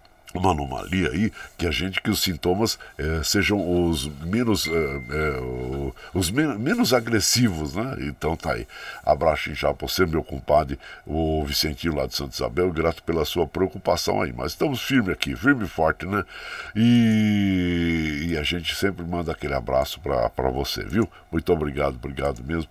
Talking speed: 165 wpm